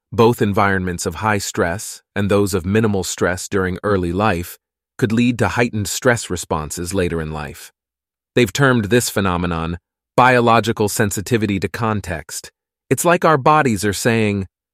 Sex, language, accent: male, English, American